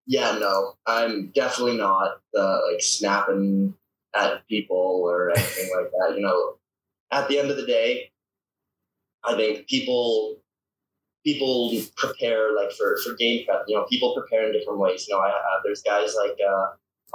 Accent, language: American, English